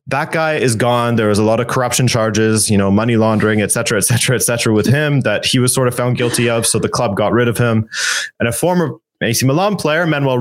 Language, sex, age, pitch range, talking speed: English, male, 20-39, 110-135 Hz, 240 wpm